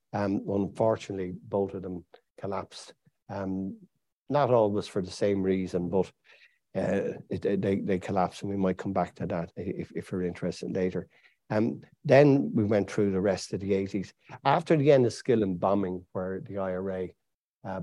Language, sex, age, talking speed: English, male, 60-79, 170 wpm